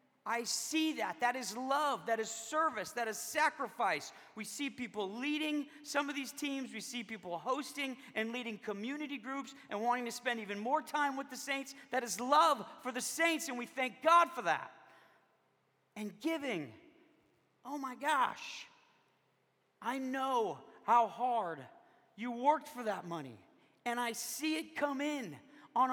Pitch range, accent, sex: 220-280 Hz, American, male